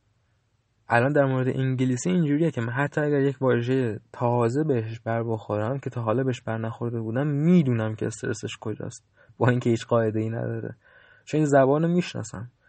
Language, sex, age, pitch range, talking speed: Persian, male, 20-39, 115-140 Hz, 170 wpm